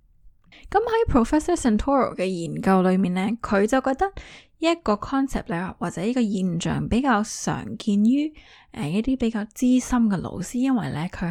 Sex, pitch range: female, 185-255 Hz